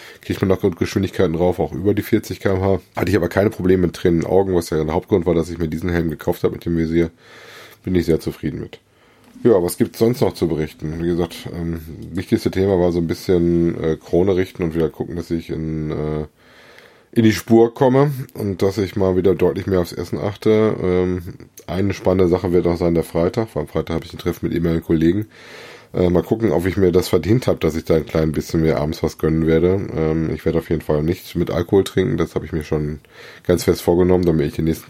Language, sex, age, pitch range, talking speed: German, male, 20-39, 80-100 Hz, 245 wpm